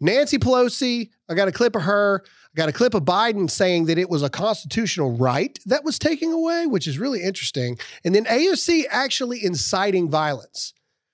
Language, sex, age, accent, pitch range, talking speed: English, male, 40-59, American, 135-205 Hz, 190 wpm